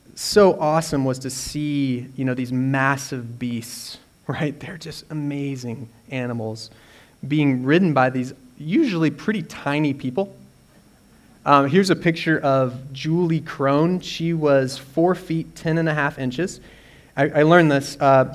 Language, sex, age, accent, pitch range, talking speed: English, male, 30-49, American, 125-155 Hz, 145 wpm